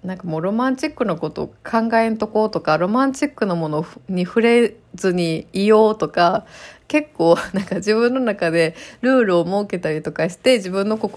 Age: 20-39